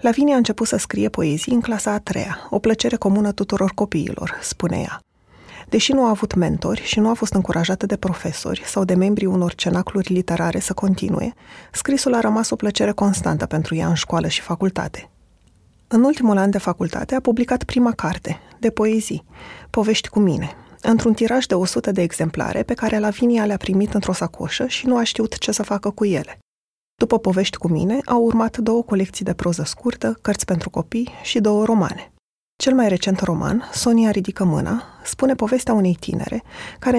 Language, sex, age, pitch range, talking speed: Romanian, female, 20-39, 185-230 Hz, 185 wpm